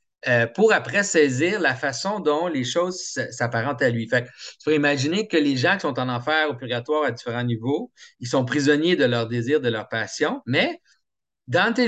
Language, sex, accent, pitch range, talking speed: French, male, Canadian, 130-170 Hz, 195 wpm